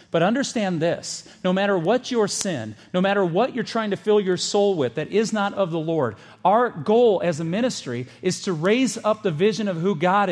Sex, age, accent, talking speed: male, 40-59, American, 220 wpm